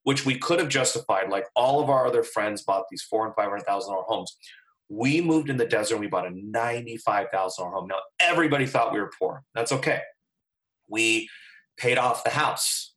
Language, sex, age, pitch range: English, male, 30-49, 110-145 Hz